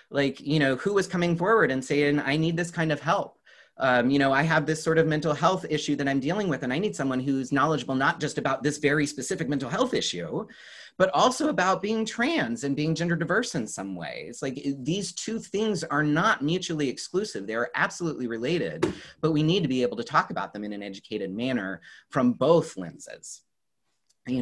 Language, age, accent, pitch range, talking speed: English, 30-49, American, 125-165 Hz, 210 wpm